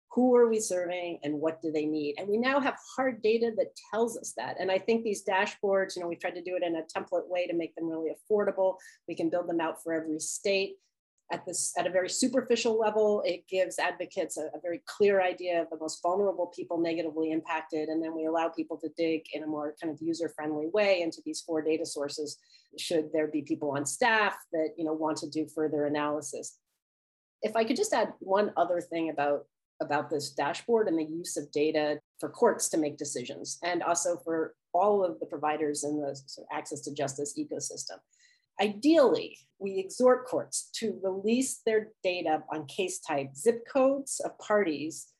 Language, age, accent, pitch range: English, 40-59, American, 155-195 Hz